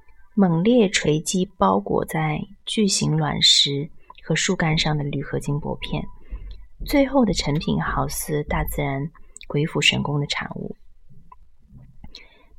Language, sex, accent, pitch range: Chinese, female, native, 155-215 Hz